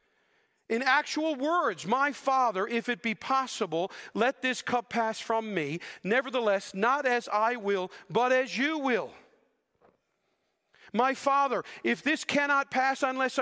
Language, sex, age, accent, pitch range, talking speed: English, male, 40-59, American, 195-255 Hz, 140 wpm